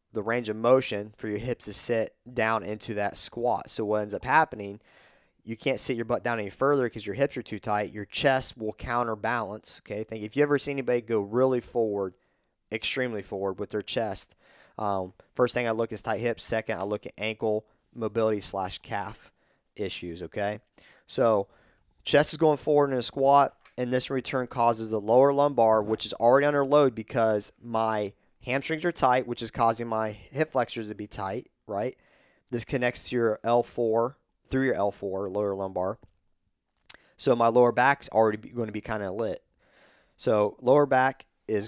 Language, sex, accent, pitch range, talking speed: English, male, American, 105-125 Hz, 185 wpm